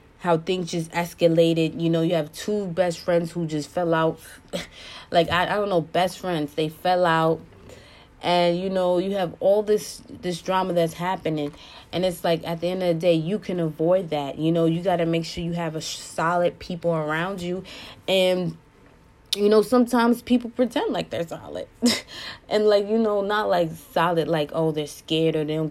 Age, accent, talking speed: 20-39, American, 200 wpm